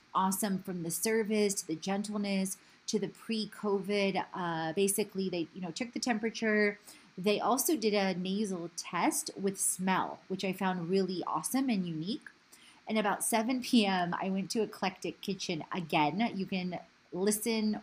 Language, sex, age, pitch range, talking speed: English, female, 30-49, 170-205 Hz, 155 wpm